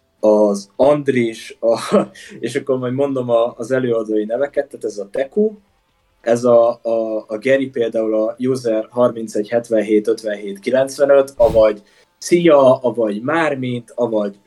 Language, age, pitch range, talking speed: Hungarian, 20-39, 110-135 Hz, 110 wpm